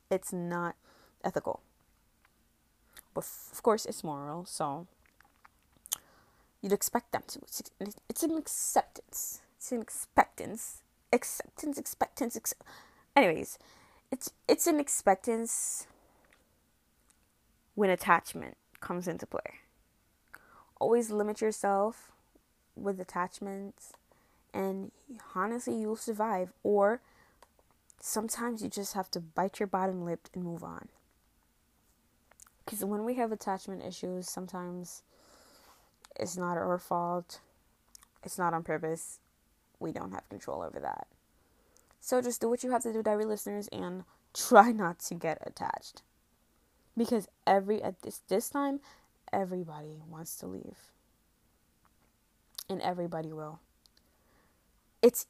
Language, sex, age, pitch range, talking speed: English, female, 20-39, 180-235 Hz, 115 wpm